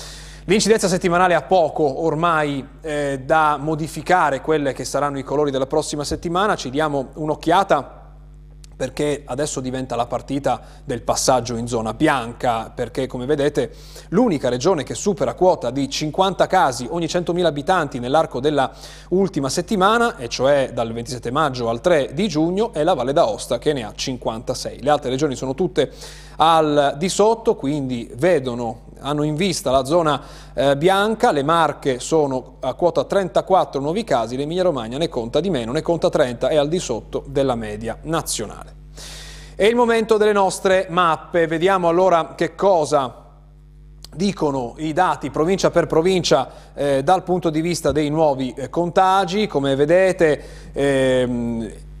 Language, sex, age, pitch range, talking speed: Italian, male, 30-49, 135-175 Hz, 155 wpm